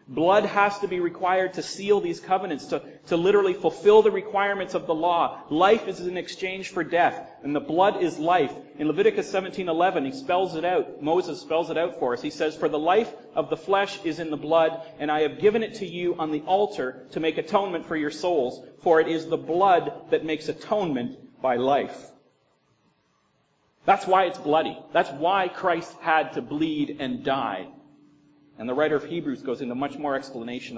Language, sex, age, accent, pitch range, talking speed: English, male, 40-59, American, 150-195 Hz, 200 wpm